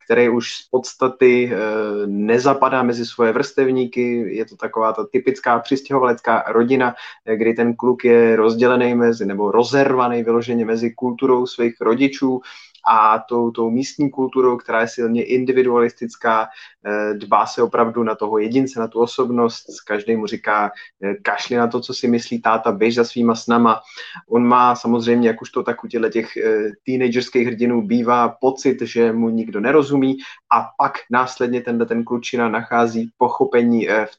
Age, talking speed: 20-39, 150 wpm